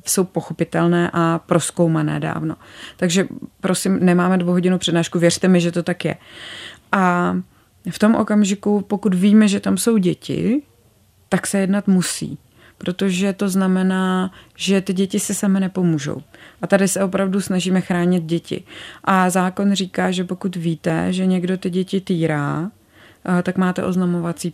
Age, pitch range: 30-49, 170-190 Hz